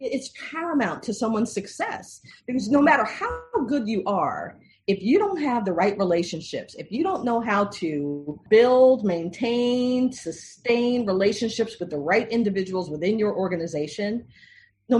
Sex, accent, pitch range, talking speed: female, American, 175-235 Hz, 150 wpm